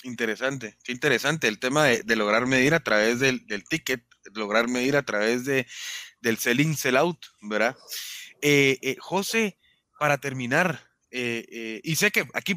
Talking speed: 165 wpm